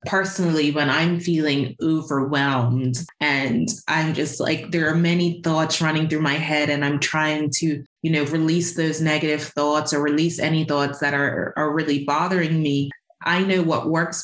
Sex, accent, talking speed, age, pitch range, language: female, American, 175 wpm, 20-39, 145-175 Hz, English